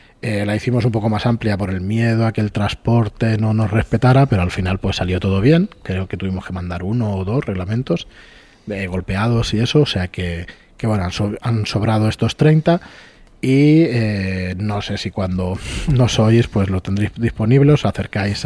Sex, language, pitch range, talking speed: male, Spanish, 95-125 Hz, 200 wpm